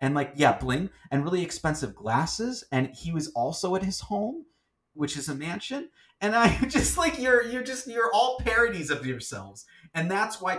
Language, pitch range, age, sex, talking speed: English, 100-150 Hz, 30-49, male, 195 wpm